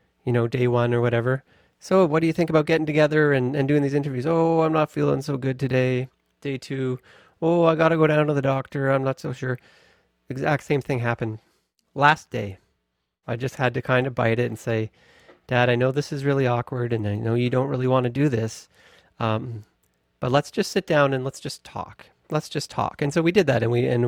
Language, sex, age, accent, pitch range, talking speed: English, male, 30-49, American, 120-145 Hz, 235 wpm